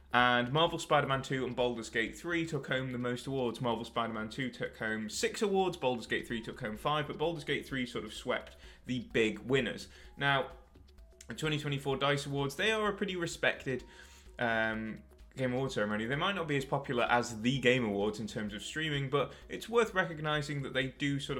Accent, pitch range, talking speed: British, 110-150 Hz, 200 wpm